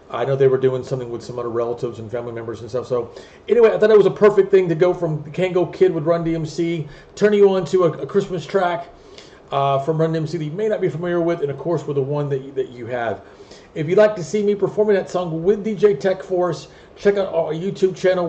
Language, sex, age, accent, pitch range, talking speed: English, male, 40-59, American, 130-165 Hz, 265 wpm